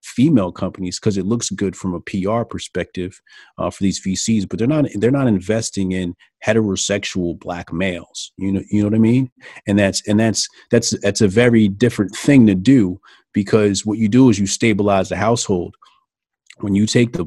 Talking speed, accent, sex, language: 195 wpm, American, male, English